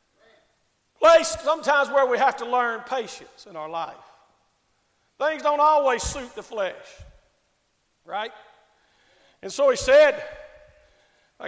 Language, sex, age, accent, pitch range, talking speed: English, male, 50-69, American, 250-395 Hz, 120 wpm